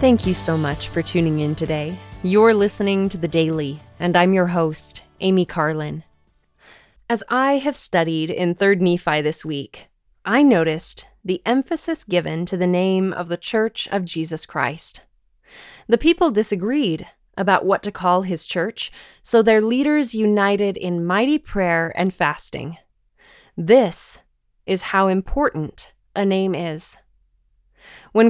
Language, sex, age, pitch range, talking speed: English, female, 20-39, 170-220 Hz, 145 wpm